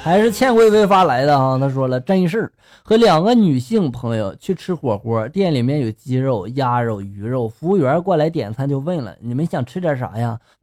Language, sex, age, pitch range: Chinese, male, 20-39, 130-220 Hz